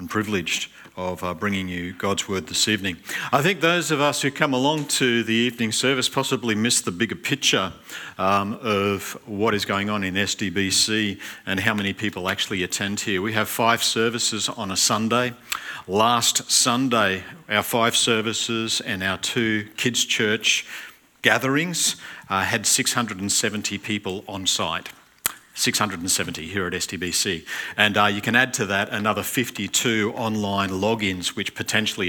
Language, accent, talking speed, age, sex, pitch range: English, Australian, 150 wpm, 50-69, male, 95-115 Hz